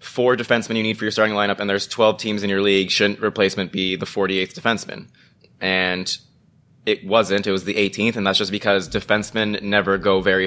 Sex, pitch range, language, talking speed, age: male, 95-110 Hz, English, 205 wpm, 20-39